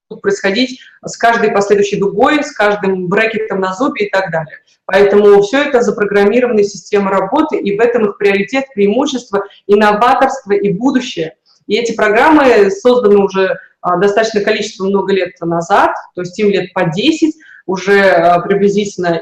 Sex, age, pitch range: female, 20-39, 190-240 Hz